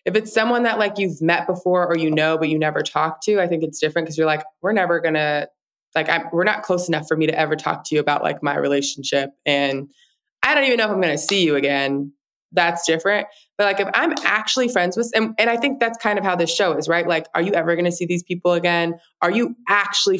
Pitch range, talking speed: 155-195 Hz, 265 wpm